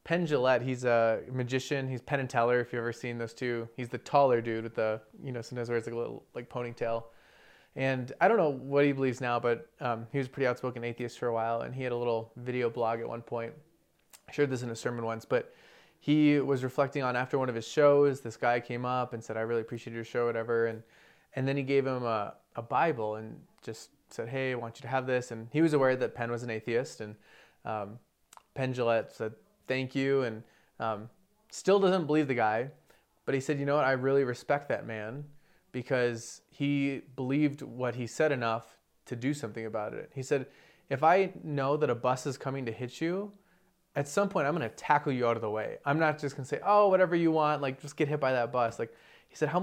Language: English